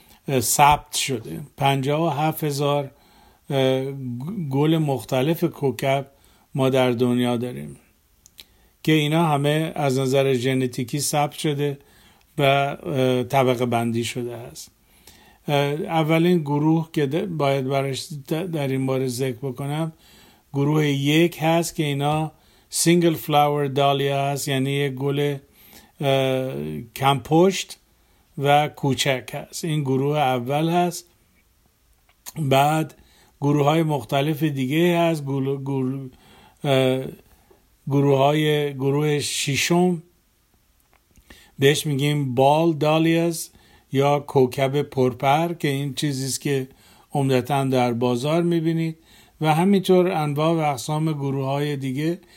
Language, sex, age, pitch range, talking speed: Persian, male, 50-69, 135-155 Hz, 110 wpm